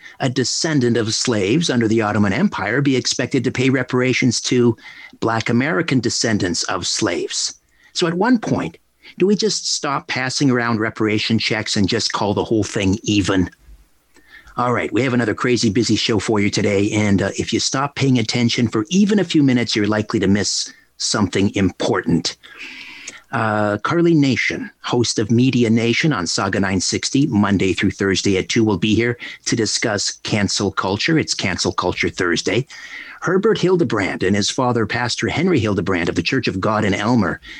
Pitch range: 100-125 Hz